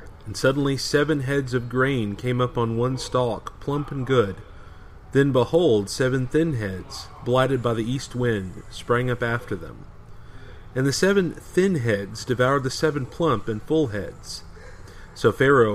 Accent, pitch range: American, 105-140 Hz